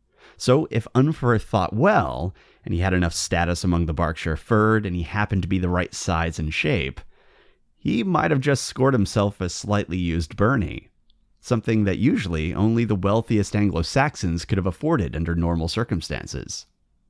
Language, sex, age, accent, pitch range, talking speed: English, male, 30-49, American, 85-110 Hz, 165 wpm